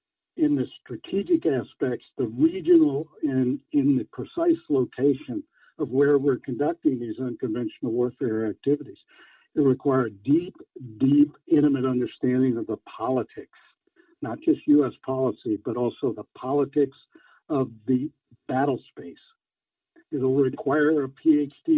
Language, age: English, 60-79